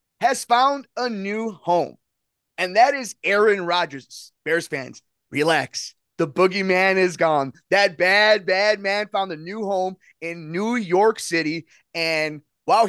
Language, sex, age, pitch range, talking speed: English, male, 30-49, 160-240 Hz, 145 wpm